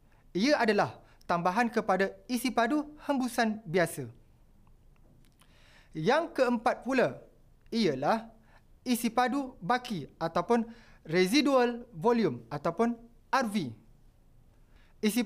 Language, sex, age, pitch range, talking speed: Malay, male, 30-49, 175-255 Hz, 85 wpm